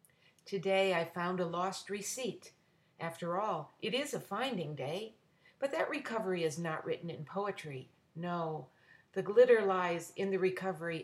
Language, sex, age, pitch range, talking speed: English, female, 60-79, 165-220 Hz, 150 wpm